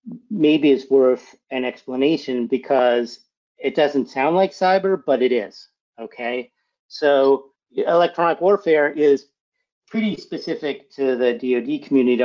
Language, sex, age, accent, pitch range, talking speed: English, male, 50-69, American, 125-150 Hz, 120 wpm